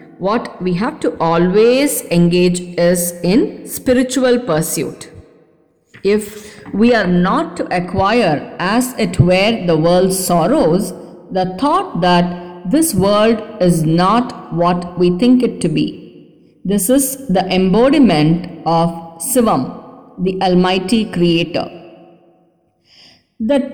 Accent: Indian